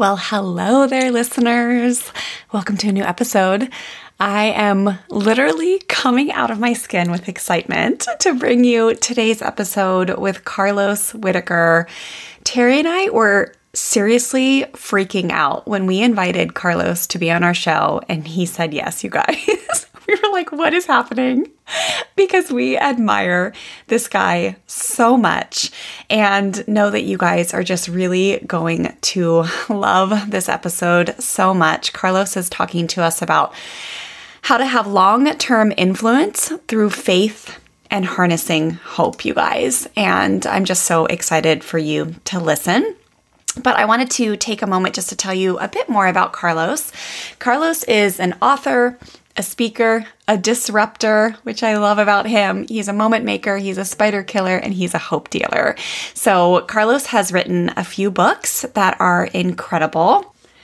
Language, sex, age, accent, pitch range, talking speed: English, female, 20-39, American, 180-240 Hz, 155 wpm